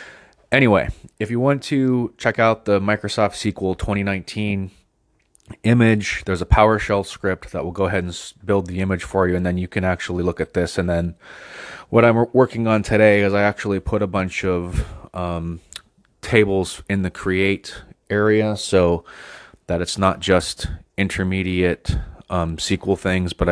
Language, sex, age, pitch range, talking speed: English, male, 20-39, 90-105 Hz, 165 wpm